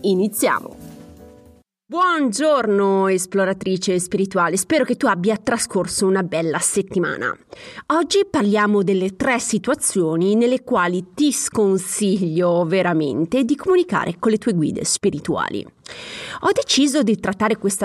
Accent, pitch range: native, 180-240 Hz